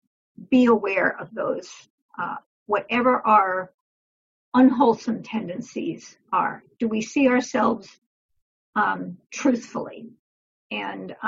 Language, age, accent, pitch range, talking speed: English, 50-69, American, 220-270 Hz, 90 wpm